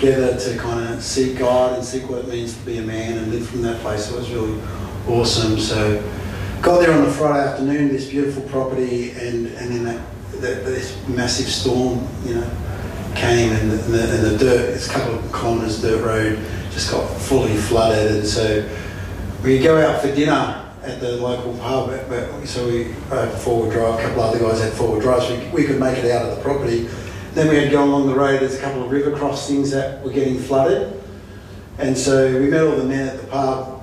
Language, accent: English, Australian